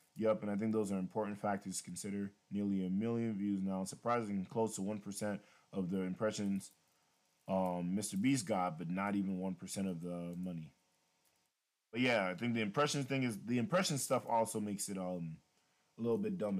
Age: 20-39